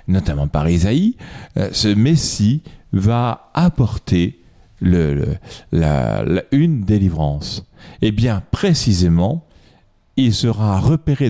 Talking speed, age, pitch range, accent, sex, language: 80 wpm, 40-59, 95-140 Hz, French, male, French